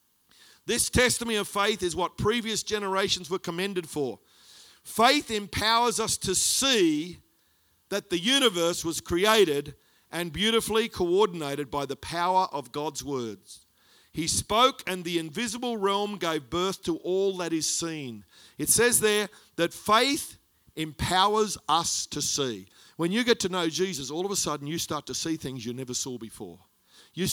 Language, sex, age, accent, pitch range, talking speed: English, male, 50-69, Australian, 165-225 Hz, 160 wpm